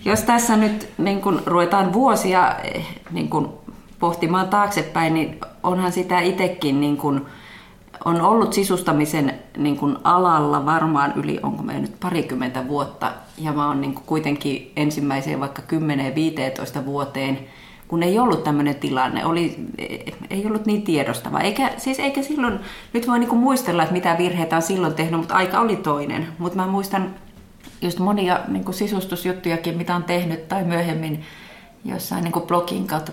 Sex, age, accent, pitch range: female, 30-49, native, 145-185 Hz